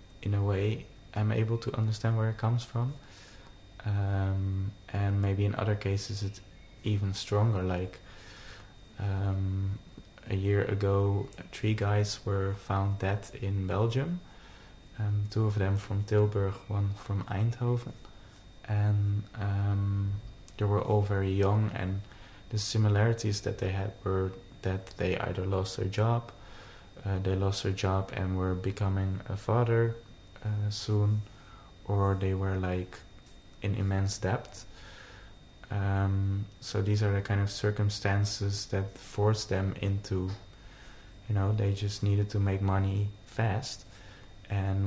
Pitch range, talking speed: 95-105 Hz, 135 wpm